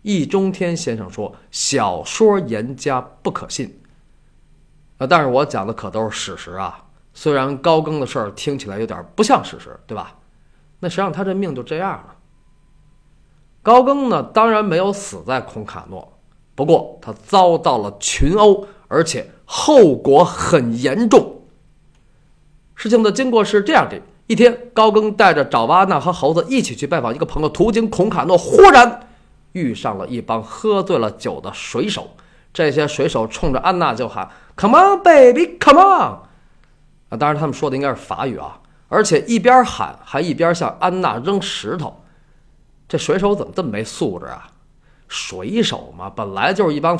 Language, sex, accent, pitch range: Chinese, male, native, 150-215 Hz